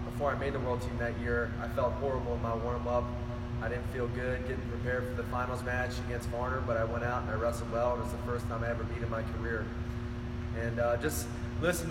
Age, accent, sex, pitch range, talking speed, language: 20-39, American, male, 115-130 Hz, 240 wpm, English